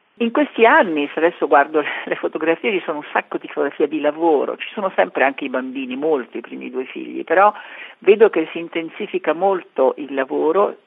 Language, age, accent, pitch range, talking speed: Italian, 50-69, native, 145-205 Hz, 195 wpm